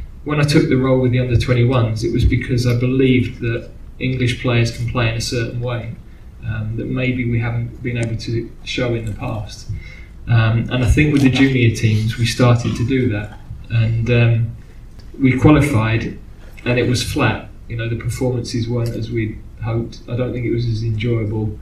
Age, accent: 20-39, British